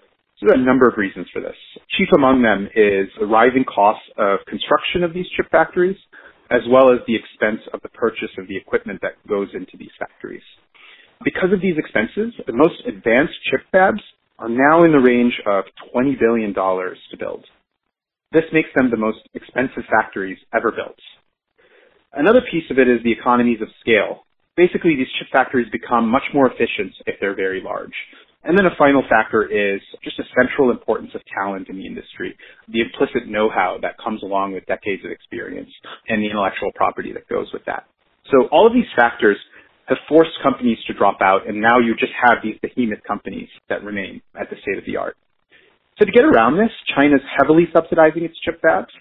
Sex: male